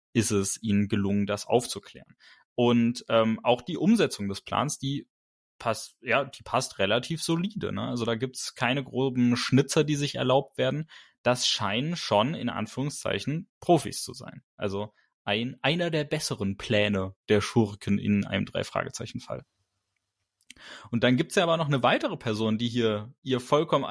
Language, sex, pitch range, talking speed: German, male, 115-145 Hz, 160 wpm